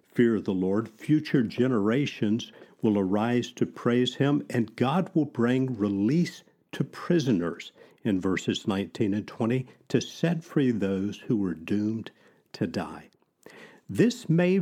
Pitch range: 100-135 Hz